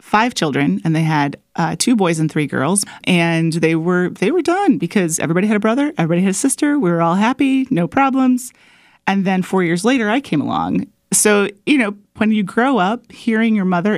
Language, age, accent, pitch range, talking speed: English, 30-49, American, 175-260 Hz, 215 wpm